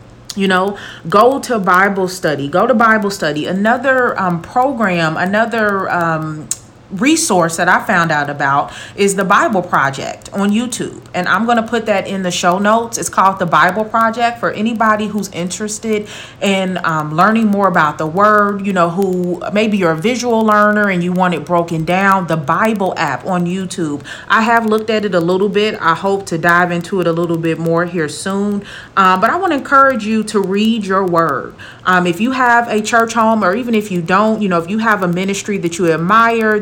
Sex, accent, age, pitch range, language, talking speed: female, American, 30-49, 170-215 Hz, English, 205 wpm